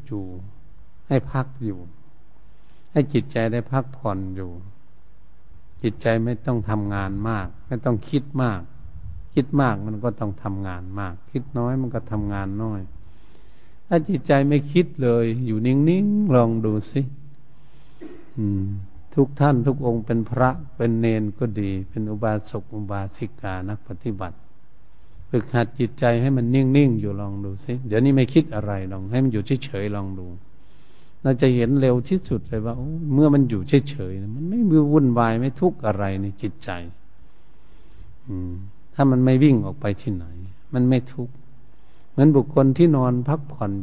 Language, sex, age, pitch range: Thai, male, 70-89, 100-135 Hz